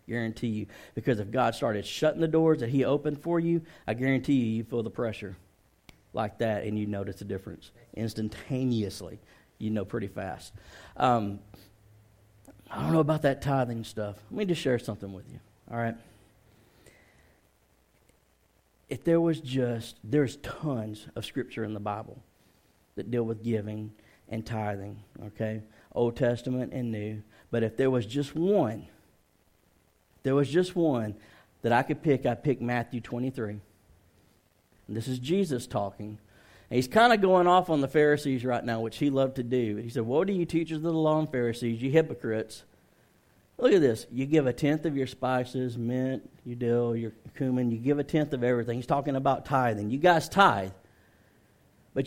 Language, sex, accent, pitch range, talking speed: English, male, American, 105-140 Hz, 175 wpm